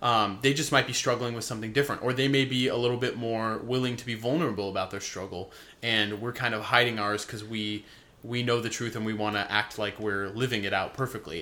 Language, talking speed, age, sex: English, 245 wpm, 20-39, male